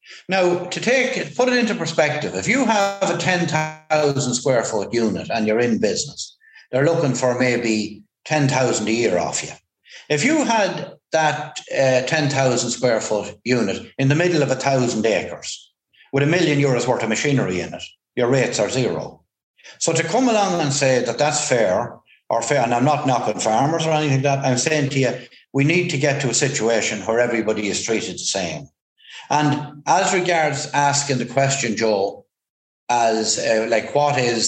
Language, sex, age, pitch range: English, male, 60-79, 115-165 Hz